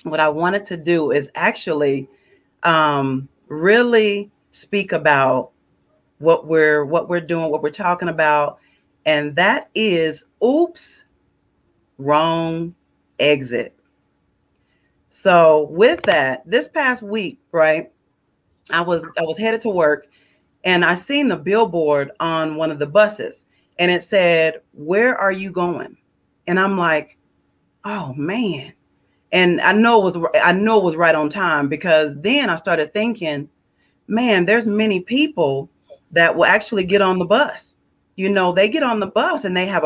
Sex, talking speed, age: female, 150 wpm, 40-59